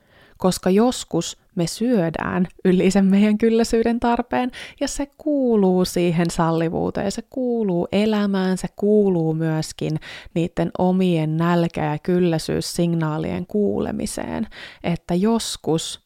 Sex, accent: female, native